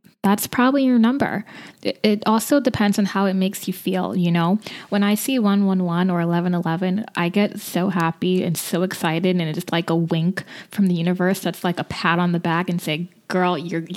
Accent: American